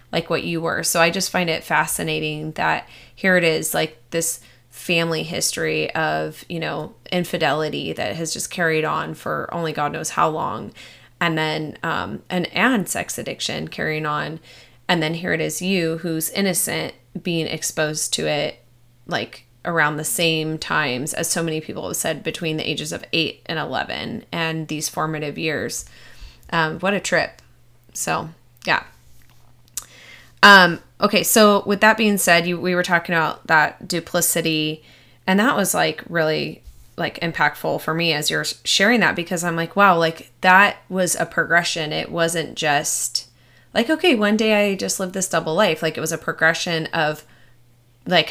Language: English